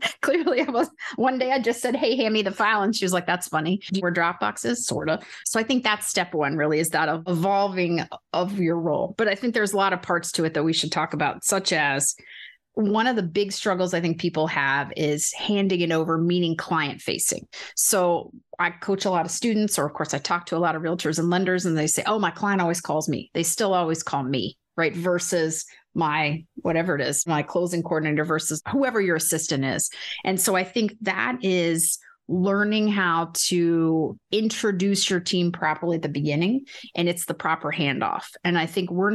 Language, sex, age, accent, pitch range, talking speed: English, female, 30-49, American, 160-195 Hz, 220 wpm